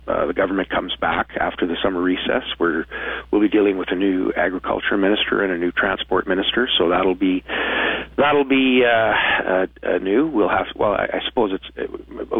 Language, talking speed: English, 190 wpm